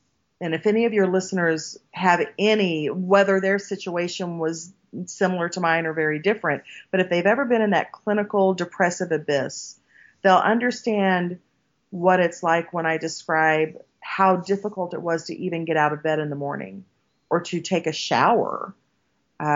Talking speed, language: 170 wpm, English